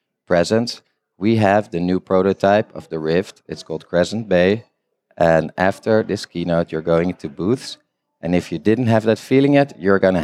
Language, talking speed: English, 180 wpm